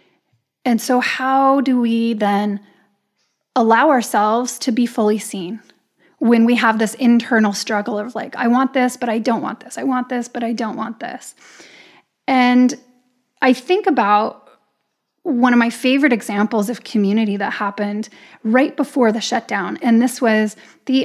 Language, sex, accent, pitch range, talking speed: English, female, American, 220-255 Hz, 165 wpm